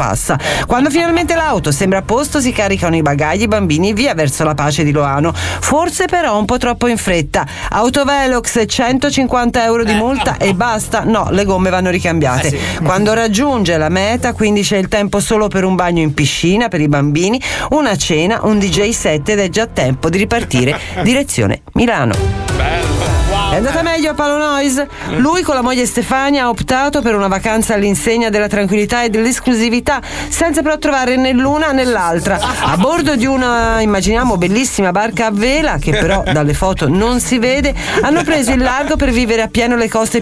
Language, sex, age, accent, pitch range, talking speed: Italian, female, 40-59, native, 190-255 Hz, 180 wpm